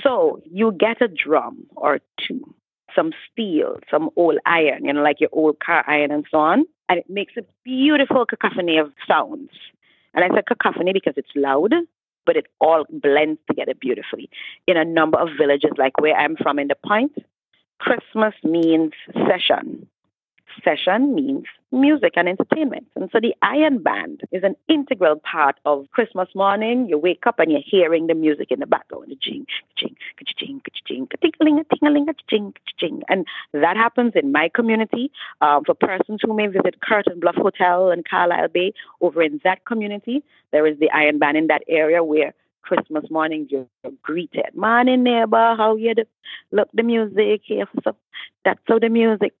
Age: 30-49